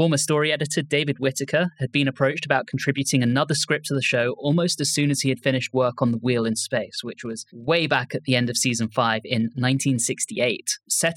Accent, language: British, English